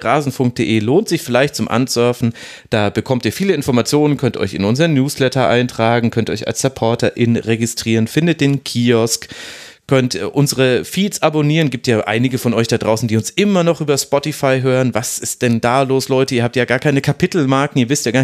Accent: German